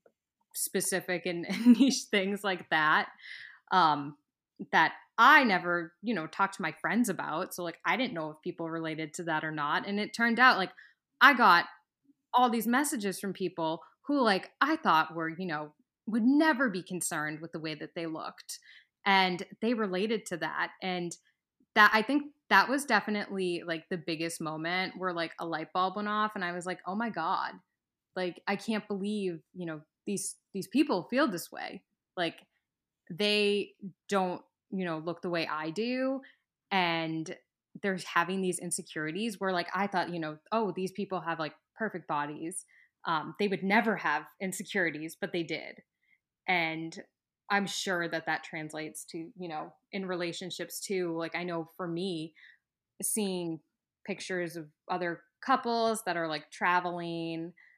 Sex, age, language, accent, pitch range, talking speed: female, 10-29, English, American, 165-205 Hz, 170 wpm